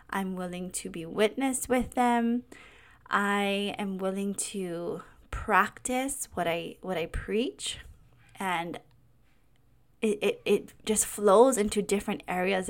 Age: 20-39